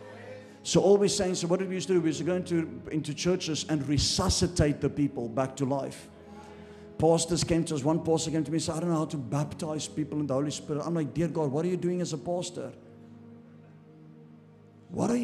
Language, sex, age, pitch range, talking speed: English, male, 50-69, 115-165 Hz, 235 wpm